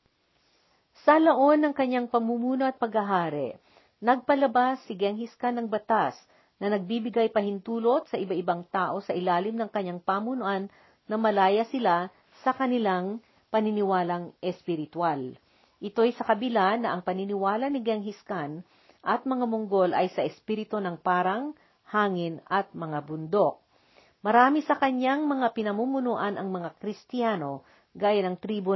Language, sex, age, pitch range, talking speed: Filipino, female, 50-69, 180-235 Hz, 130 wpm